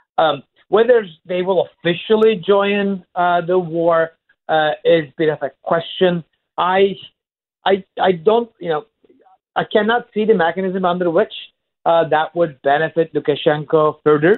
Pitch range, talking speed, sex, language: 140-170 Hz, 145 wpm, male, English